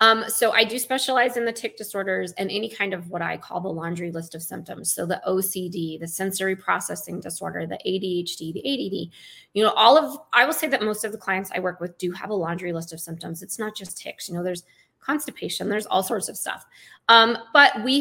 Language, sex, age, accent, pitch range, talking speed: English, female, 20-39, American, 175-220 Hz, 235 wpm